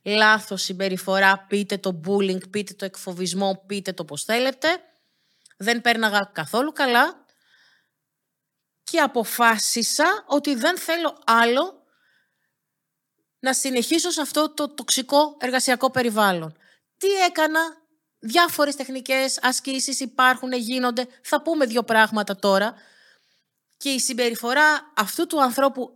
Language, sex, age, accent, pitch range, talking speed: Greek, female, 30-49, native, 210-300 Hz, 110 wpm